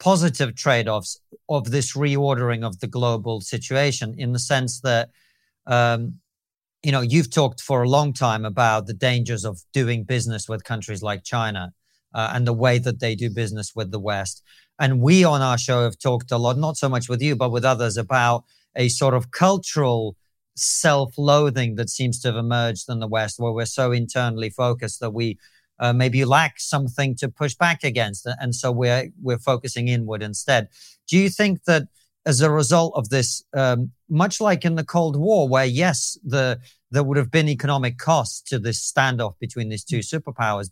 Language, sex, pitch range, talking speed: English, male, 115-140 Hz, 195 wpm